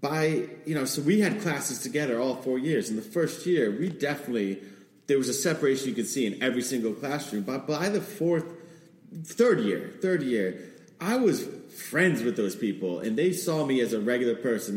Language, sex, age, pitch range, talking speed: English, male, 30-49, 110-150 Hz, 205 wpm